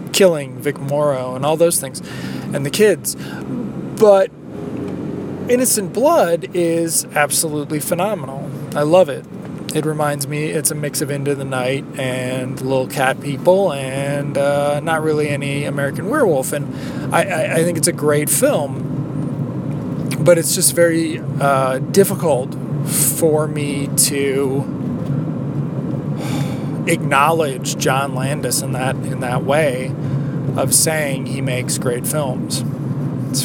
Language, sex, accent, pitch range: English, male, American, 135-155 Hz